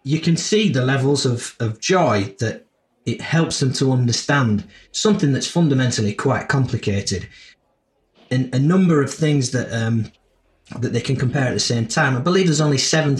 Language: English